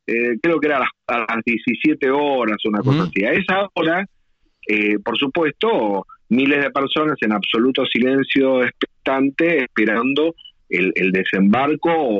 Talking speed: 145 wpm